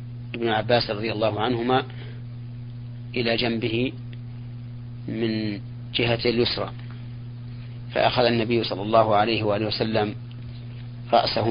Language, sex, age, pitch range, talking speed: Arabic, male, 40-59, 115-120 Hz, 95 wpm